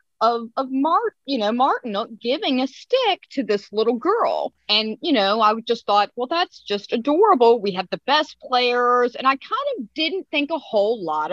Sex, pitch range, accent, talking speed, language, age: female, 190-285 Hz, American, 195 wpm, English, 30-49